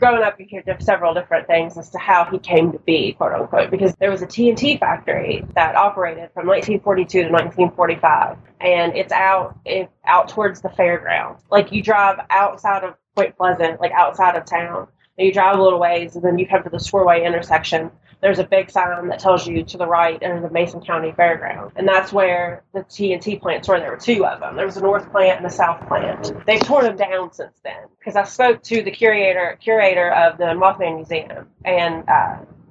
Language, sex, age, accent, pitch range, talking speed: English, female, 30-49, American, 170-195 Hz, 215 wpm